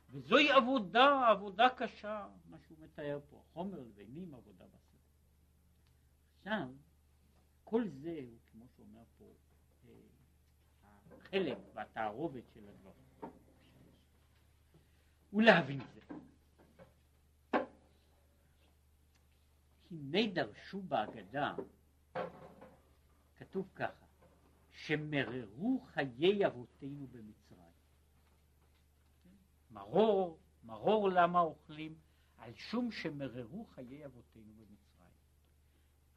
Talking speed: 75 wpm